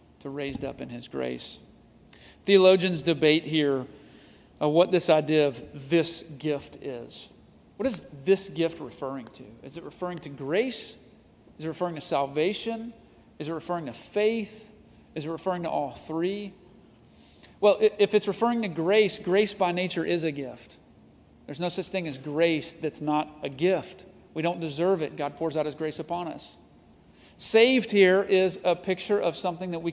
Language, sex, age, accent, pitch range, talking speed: English, male, 40-59, American, 155-190 Hz, 170 wpm